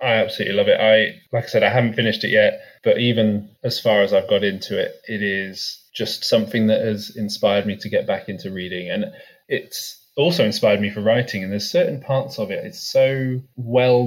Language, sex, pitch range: English, male, 100-125 Hz